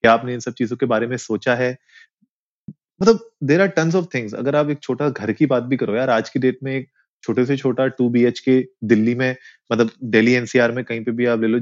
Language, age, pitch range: Hindi, 30-49, 120-155 Hz